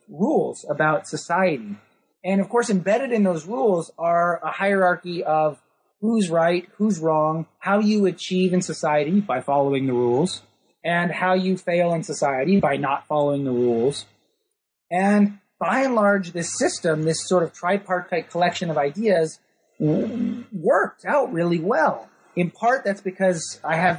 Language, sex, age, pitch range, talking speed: English, male, 30-49, 155-195 Hz, 155 wpm